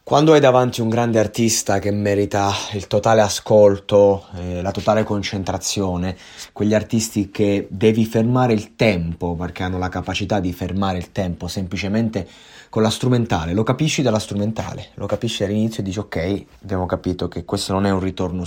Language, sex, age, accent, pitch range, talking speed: Italian, male, 30-49, native, 95-110 Hz, 170 wpm